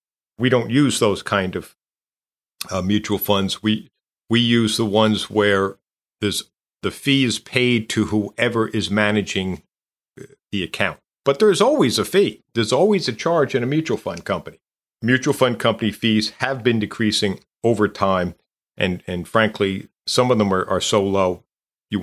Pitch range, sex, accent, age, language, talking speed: 100-125 Hz, male, American, 50-69, English, 165 wpm